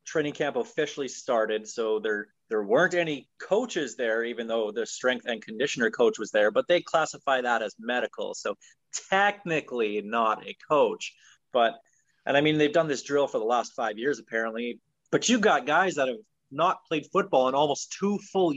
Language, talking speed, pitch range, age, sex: English, 185 wpm, 125-170 Hz, 30-49, male